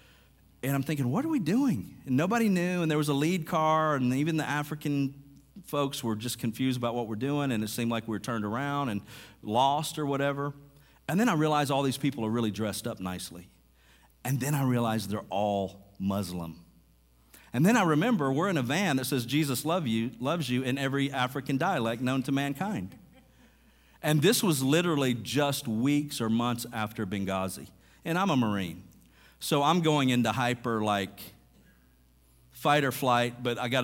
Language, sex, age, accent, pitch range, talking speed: English, male, 50-69, American, 110-145 Hz, 190 wpm